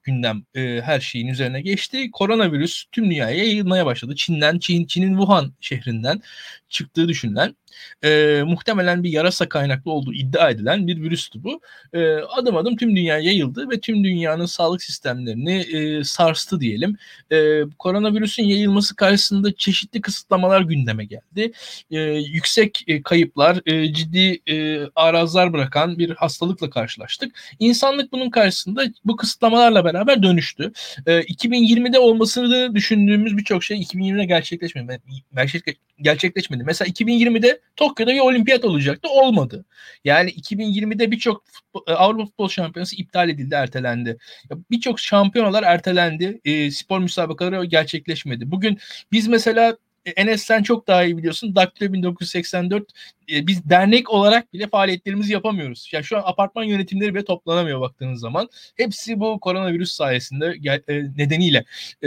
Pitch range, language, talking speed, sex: 155-215 Hz, Turkish, 130 wpm, male